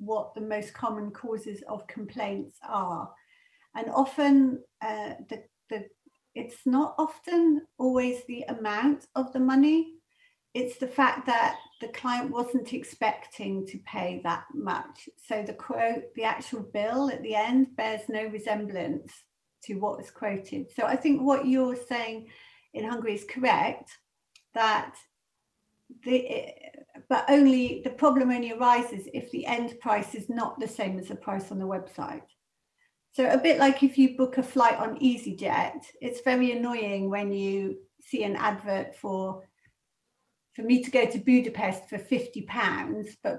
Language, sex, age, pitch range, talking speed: Hungarian, female, 40-59, 215-270 Hz, 155 wpm